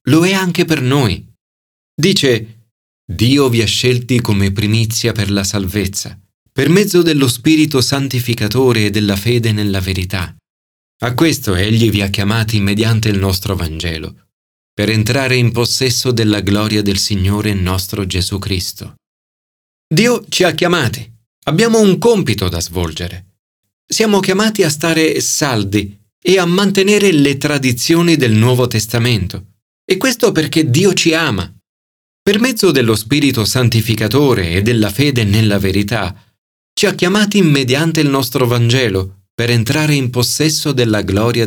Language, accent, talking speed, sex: Italian, native, 140 wpm, male